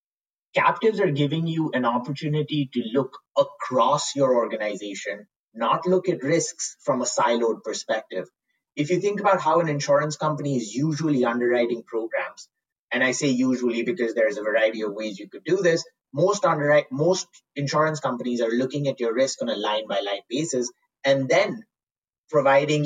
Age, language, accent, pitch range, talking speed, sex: 30-49, English, Indian, 125-160 Hz, 165 wpm, male